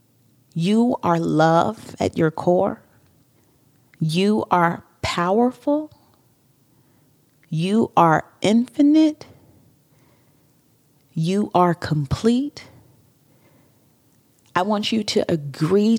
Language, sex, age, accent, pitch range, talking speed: English, female, 40-59, American, 140-195 Hz, 75 wpm